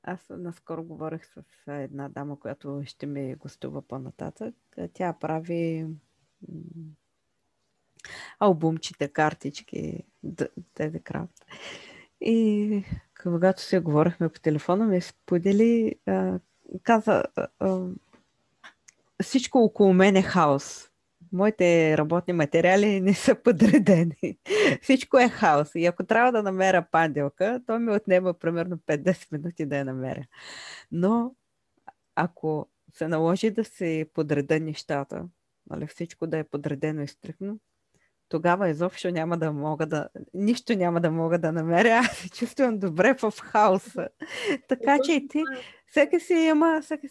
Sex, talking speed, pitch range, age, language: female, 125 wpm, 160-225 Hz, 20-39, Bulgarian